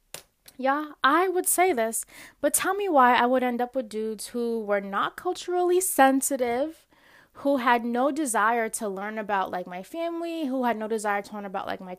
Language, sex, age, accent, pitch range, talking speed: English, female, 20-39, American, 205-290 Hz, 195 wpm